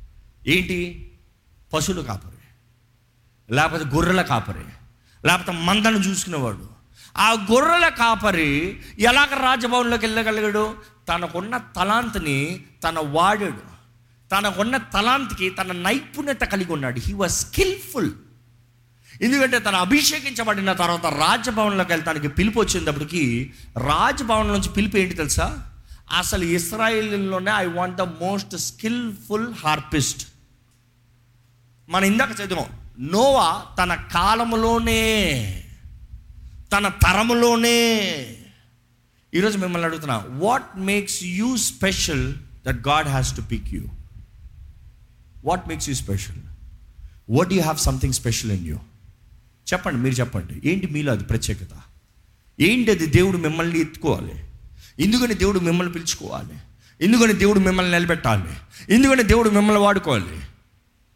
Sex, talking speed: male, 100 wpm